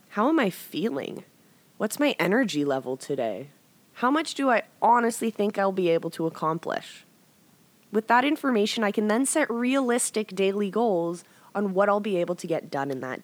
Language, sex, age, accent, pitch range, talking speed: English, female, 20-39, American, 165-235 Hz, 180 wpm